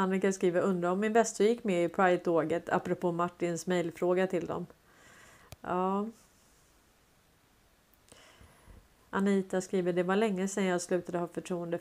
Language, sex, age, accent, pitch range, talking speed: Swedish, female, 30-49, native, 175-200 Hz, 135 wpm